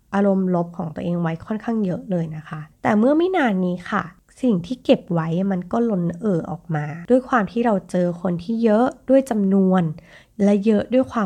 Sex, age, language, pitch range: female, 20-39, Thai, 175-250 Hz